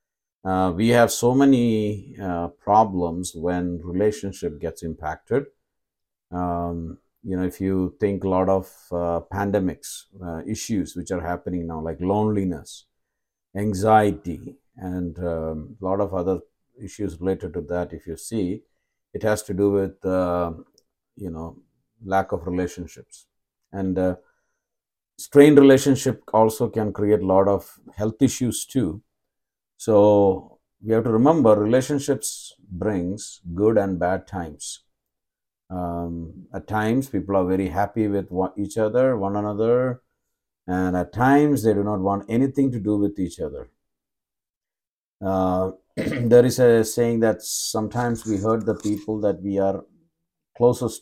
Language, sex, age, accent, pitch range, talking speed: English, male, 50-69, Indian, 90-110 Hz, 140 wpm